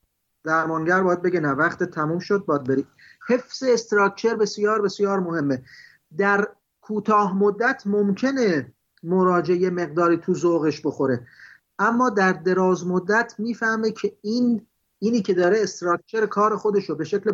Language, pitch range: Persian, 160-205 Hz